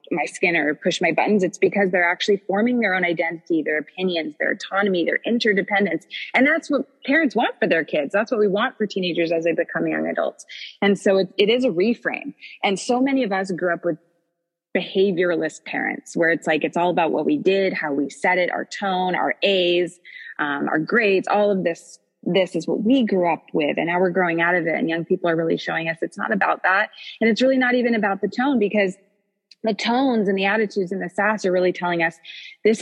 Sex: female